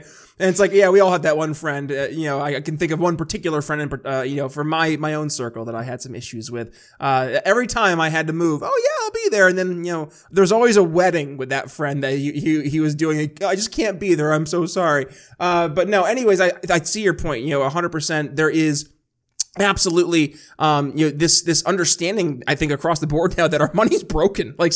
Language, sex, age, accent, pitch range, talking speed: English, male, 20-39, American, 145-180 Hz, 250 wpm